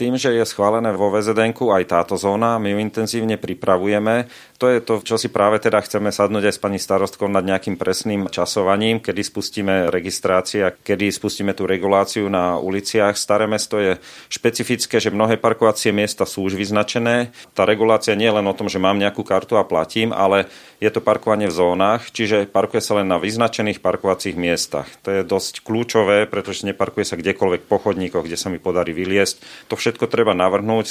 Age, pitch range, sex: 40-59, 95-110 Hz, male